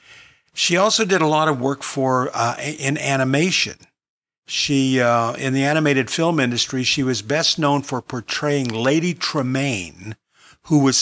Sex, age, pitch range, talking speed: male, 50-69, 115-150 Hz, 150 wpm